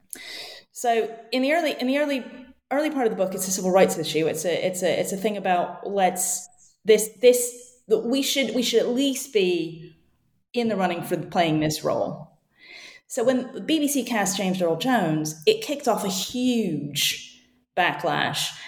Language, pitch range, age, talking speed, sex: English, 175-245 Hz, 30-49, 180 wpm, female